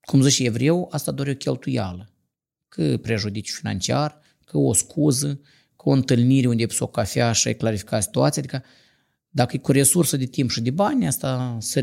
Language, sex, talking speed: Romanian, male, 190 wpm